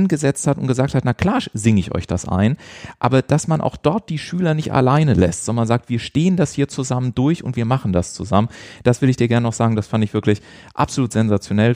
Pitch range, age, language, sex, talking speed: 105-130 Hz, 40-59, German, male, 245 wpm